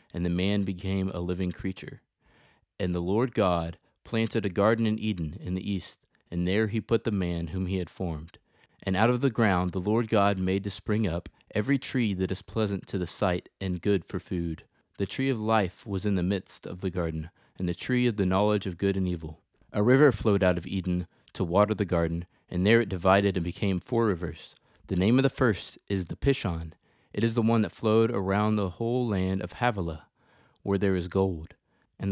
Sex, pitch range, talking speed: male, 90-110 Hz, 220 wpm